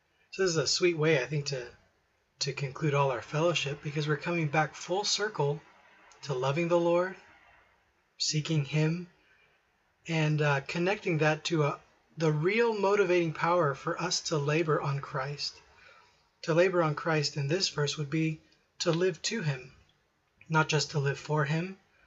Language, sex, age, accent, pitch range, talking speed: English, male, 30-49, American, 140-170 Hz, 165 wpm